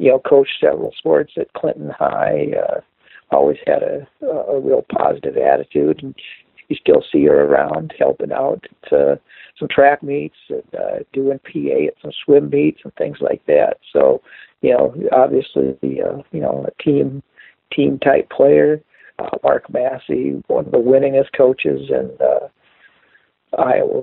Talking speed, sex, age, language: 160 wpm, male, 60-79, English